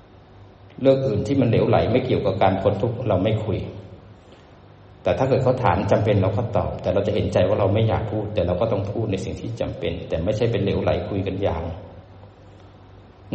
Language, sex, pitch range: Thai, male, 100-130 Hz